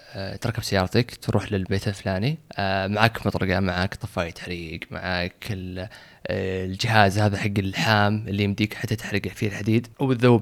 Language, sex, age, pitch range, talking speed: Arabic, male, 20-39, 100-135 Hz, 125 wpm